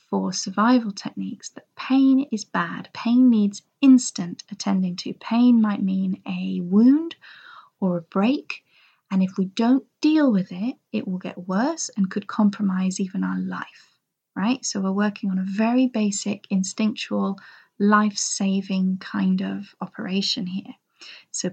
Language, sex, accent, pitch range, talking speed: English, female, British, 195-235 Hz, 145 wpm